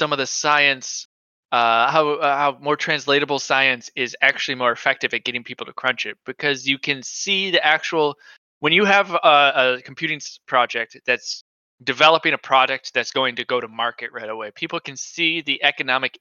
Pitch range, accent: 125-160 Hz, American